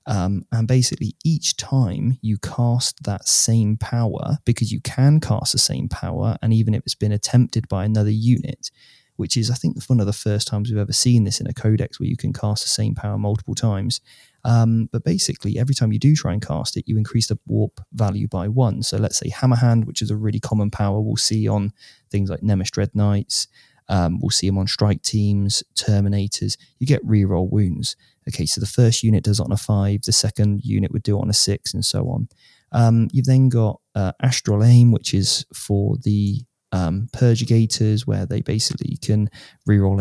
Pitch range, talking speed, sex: 105-125 Hz, 210 wpm, male